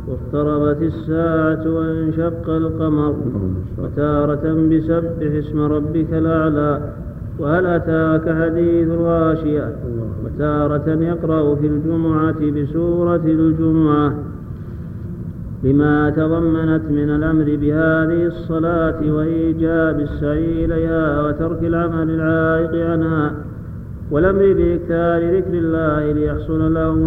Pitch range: 150-165 Hz